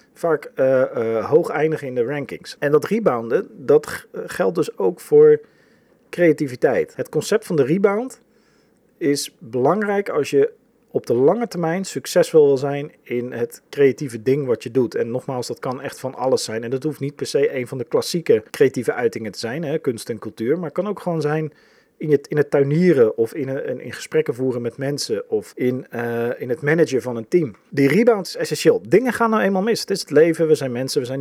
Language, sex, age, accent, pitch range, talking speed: Dutch, male, 40-59, Dutch, 140-235 Hz, 210 wpm